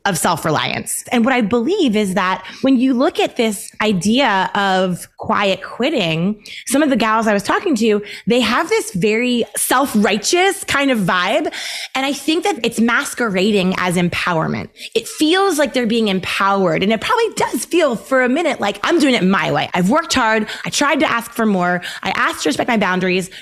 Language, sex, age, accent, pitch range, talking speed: English, female, 20-39, American, 200-280 Hz, 200 wpm